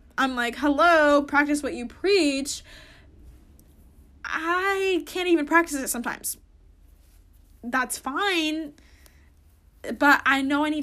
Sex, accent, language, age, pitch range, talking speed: female, American, English, 10-29, 230-300 Hz, 110 wpm